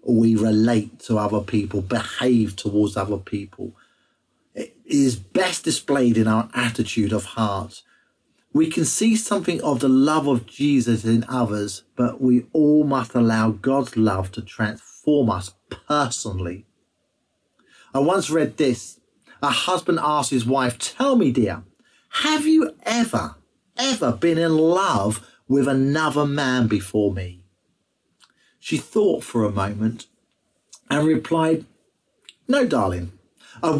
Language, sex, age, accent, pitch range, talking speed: English, male, 40-59, British, 110-170 Hz, 130 wpm